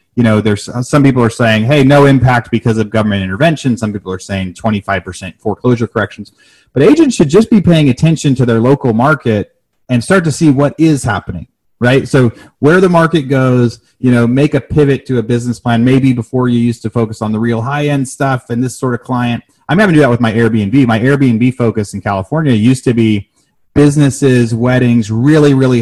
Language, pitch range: English, 110-135 Hz